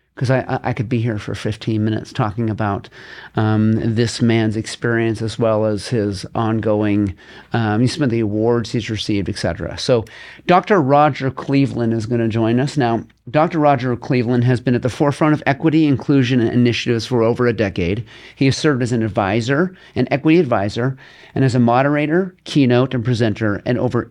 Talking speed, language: 185 wpm, English